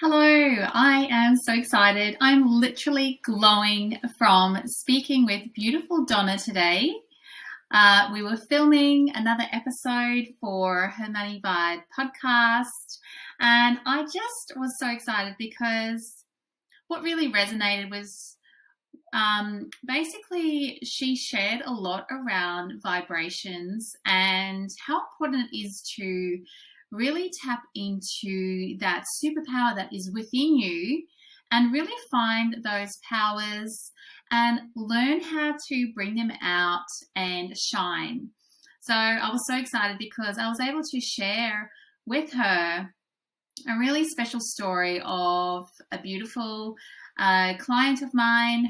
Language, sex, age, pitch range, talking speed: English, female, 30-49, 205-265 Hz, 120 wpm